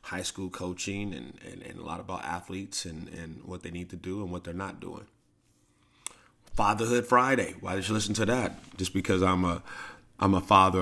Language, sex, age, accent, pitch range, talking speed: English, male, 30-49, American, 85-95 Hz, 205 wpm